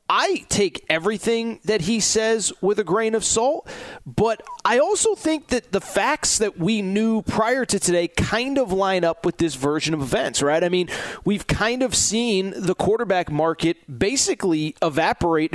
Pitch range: 150-195 Hz